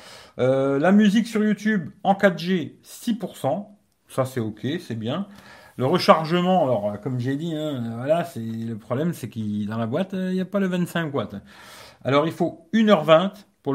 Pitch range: 130-185 Hz